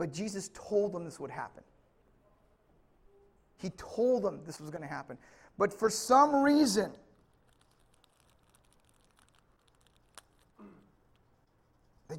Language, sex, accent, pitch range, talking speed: English, male, American, 165-220 Hz, 100 wpm